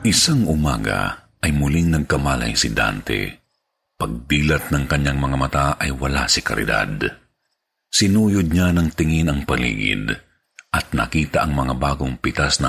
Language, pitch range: Filipino, 70-95 Hz